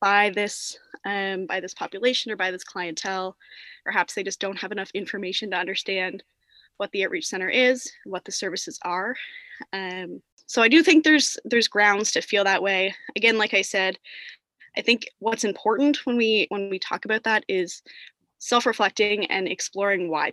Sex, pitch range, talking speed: female, 185-225 Hz, 175 wpm